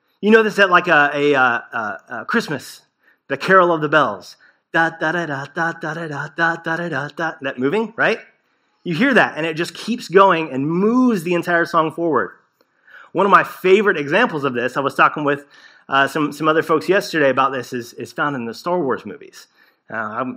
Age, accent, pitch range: 30-49, American, 150-205 Hz